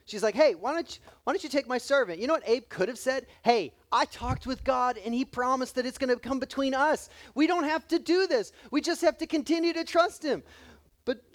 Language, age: English, 30-49